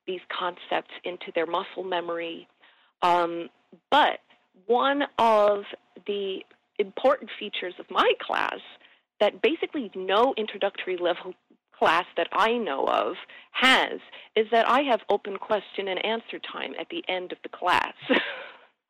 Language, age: English, 40-59